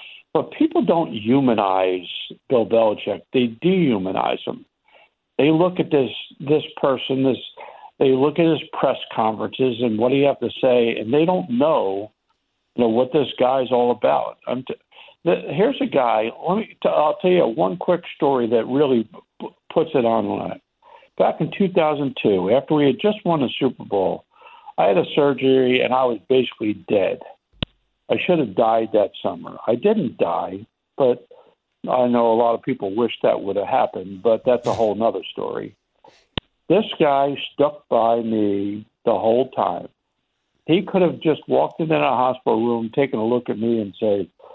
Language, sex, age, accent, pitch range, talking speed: English, male, 50-69, American, 115-160 Hz, 175 wpm